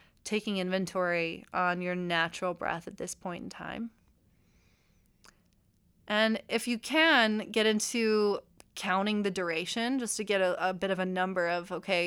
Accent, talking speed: American, 155 wpm